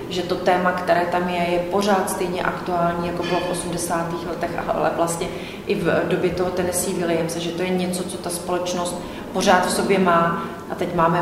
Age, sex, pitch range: 30-49, female, 170-185 Hz